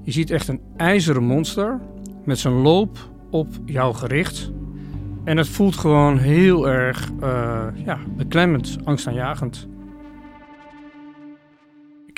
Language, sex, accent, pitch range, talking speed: Dutch, male, Dutch, 120-150 Hz, 115 wpm